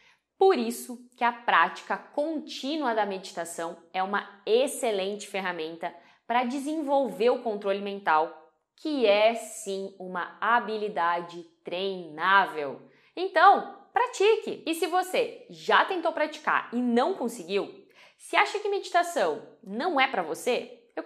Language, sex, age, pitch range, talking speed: Portuguese, female, 20-39, 190-275 Hz, 125 wpm